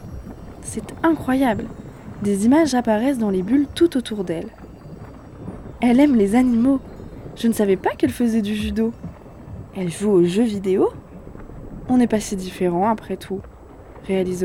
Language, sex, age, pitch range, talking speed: French, female, 20-39, 200-265 Hz, 155 wpm